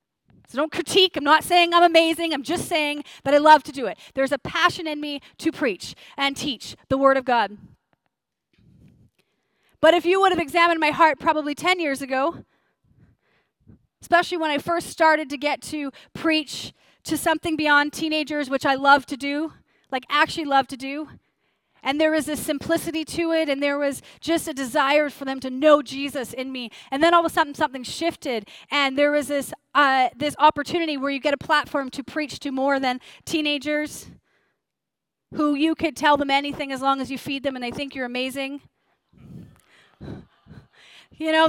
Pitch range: 280-325 Hz